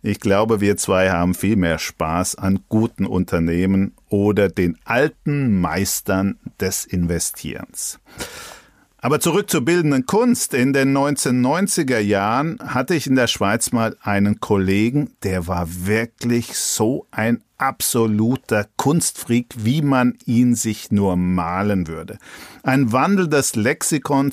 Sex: male